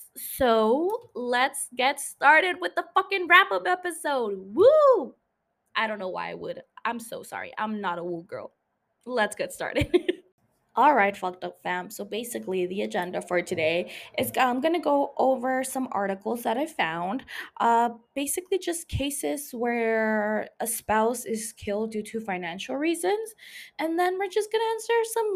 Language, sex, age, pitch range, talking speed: English, female, 20-39, 205-300 Hz, 170 wpm